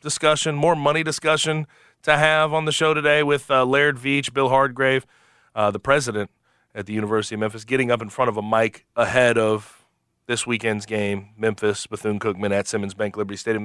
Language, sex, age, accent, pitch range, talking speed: English, male, 30-49, American, 110-140 Hz, 190 wpm